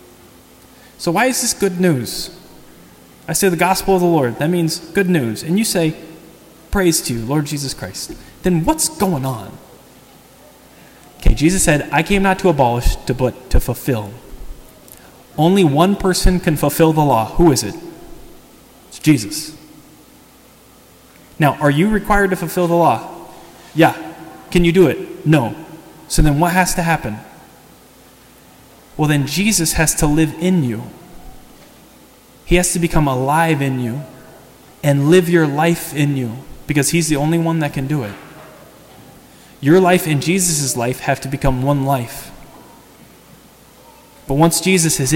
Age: 20-39